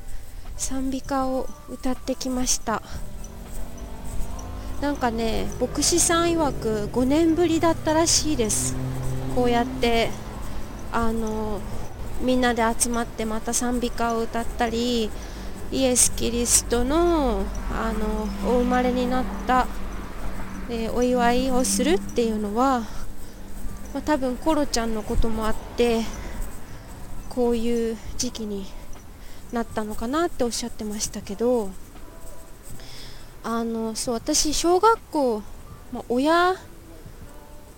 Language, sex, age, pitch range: Japanese, female, 20-39, 225-285 Hz